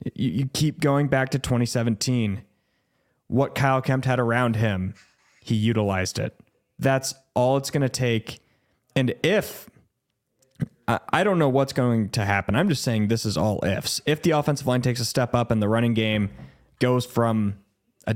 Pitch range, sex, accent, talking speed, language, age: 110-125 Hz, male, American, 170 wpm, English, 20-39